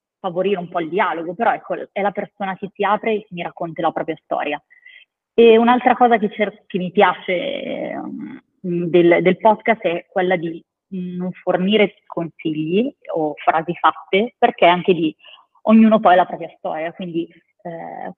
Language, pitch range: Italian, 175-210 Hz